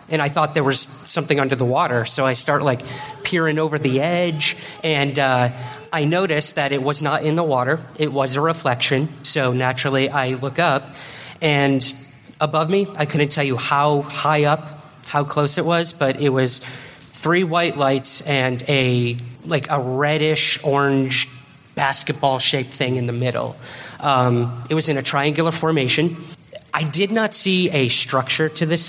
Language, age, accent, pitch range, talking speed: English, 30-49, American, 130-150 Hz, 170 wpm